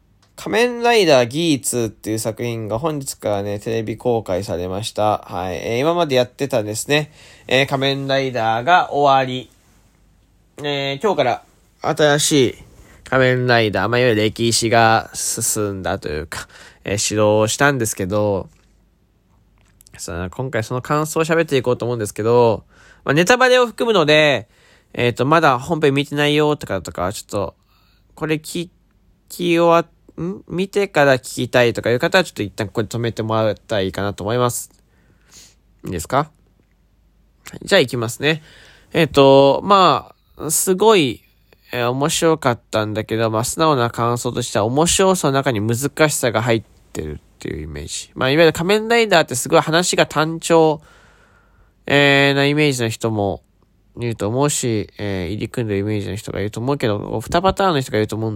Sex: male